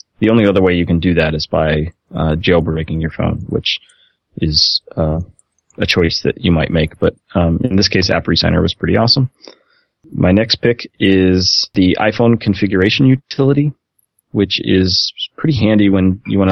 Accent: American